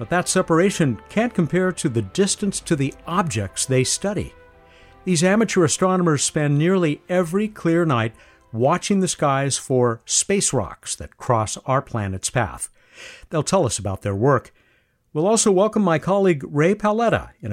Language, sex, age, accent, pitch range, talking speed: English, male, 60-79, American, 115-185 Hz, 160 wpm